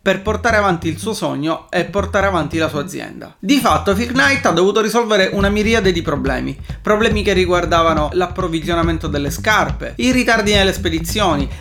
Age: 30-49